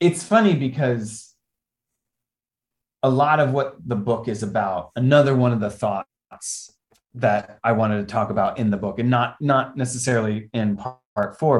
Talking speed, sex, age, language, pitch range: 170 wpm, male, 30-49, English, 105-130 Hz